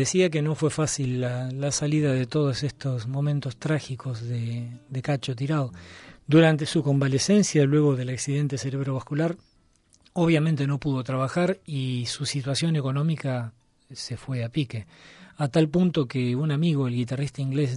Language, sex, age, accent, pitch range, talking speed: Spanish, male, 40-59, Argentinian, 130-155 Hz, 150 wpm